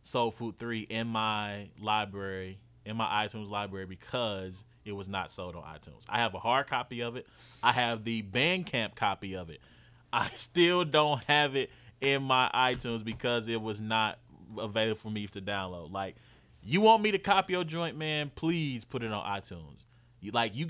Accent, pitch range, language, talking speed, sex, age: American, 105-125 Hz, English, 190 wpm, male, 20-39